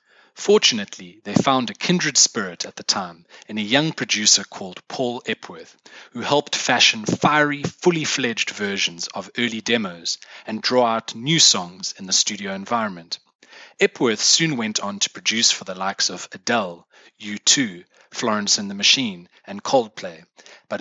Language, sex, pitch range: English, male, 100-160 Hz